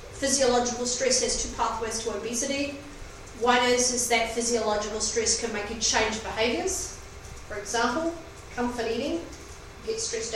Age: 30-49